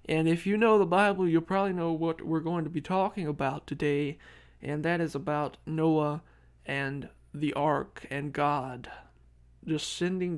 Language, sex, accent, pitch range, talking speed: English, male, American, 135-175 Hz, 170 wpm